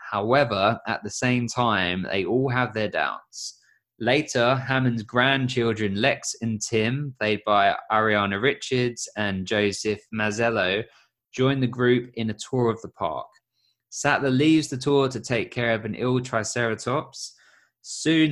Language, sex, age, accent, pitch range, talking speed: English, male, 20-39, British, 105-125 Hz, 145 wpm